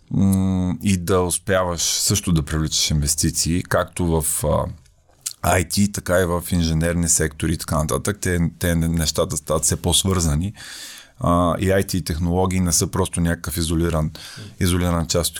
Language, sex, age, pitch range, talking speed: Bulgarian, male, 30-49, 85-100 Hz, 140 wpm